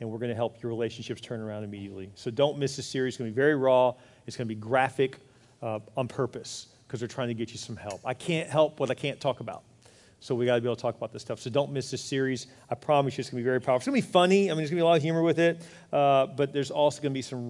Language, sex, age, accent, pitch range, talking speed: English, male, 40-59, American, 120-140 Hz, 325 wpm